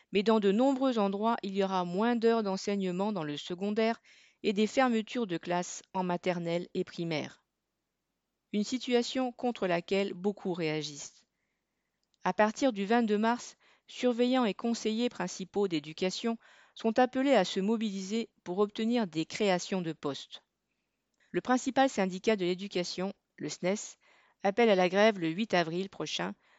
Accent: French